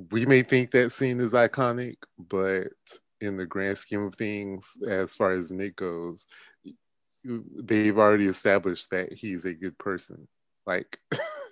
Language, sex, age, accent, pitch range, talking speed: English, male, 30-49, American, 100-125 Hz, 145 wpm